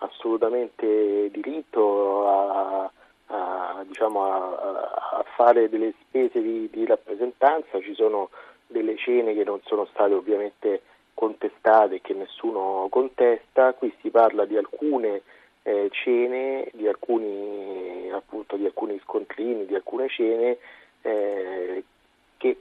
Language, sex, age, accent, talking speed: Italian, male, 40-59, native, 115 wpm